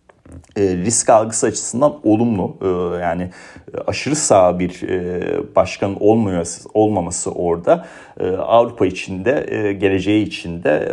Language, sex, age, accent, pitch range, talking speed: Turkish, male, 40-59, native, 95-130 Hz, 90 wpm